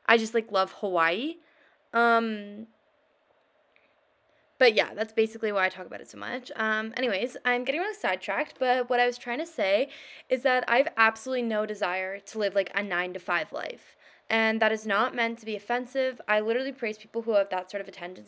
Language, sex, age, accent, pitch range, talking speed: English, female, 20-39, American, 200-250 Hz, 200 wpm